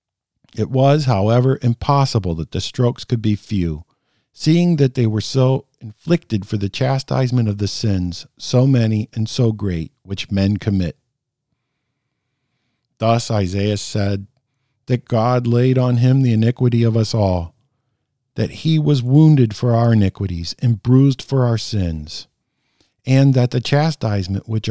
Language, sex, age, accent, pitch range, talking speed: English, male, 50-69, American, 105-130 Hz, 145 wpm